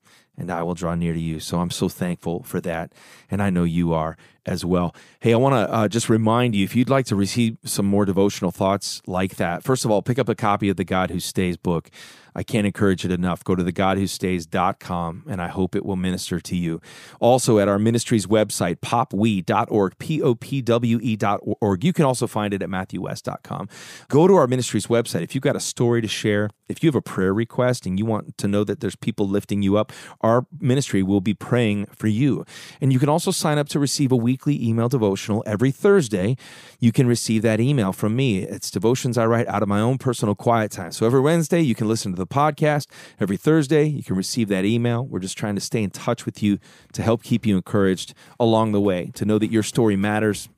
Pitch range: 95-120 Hz